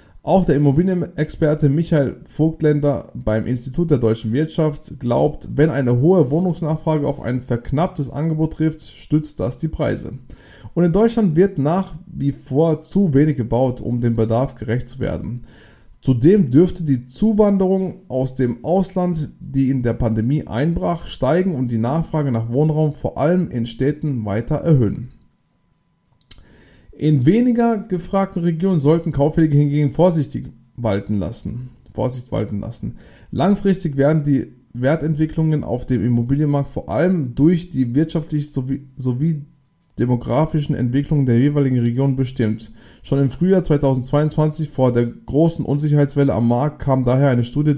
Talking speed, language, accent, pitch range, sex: 135 wpm, German, German, 125-160 Hz, male